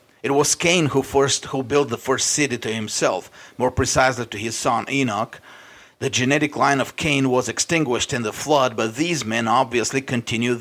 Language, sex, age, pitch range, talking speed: English, male, 40-59, 115-135 Hz, 185 wpm